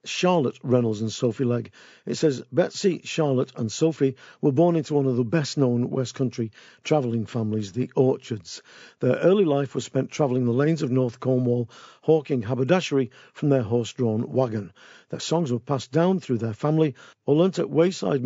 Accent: British